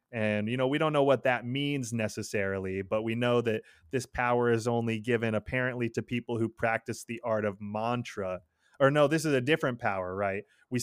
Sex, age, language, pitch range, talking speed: male, 20-39, English, 105-120 Hz, 205 wpm